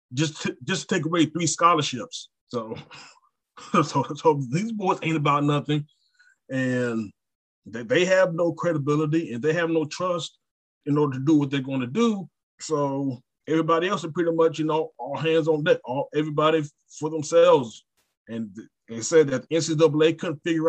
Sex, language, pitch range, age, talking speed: male, English, 125-155 Hz, 30-49, 175 wpm